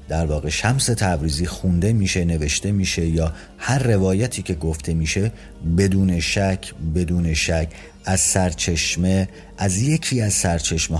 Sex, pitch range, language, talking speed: male, 85-100 Hz, Persian, 130 wpm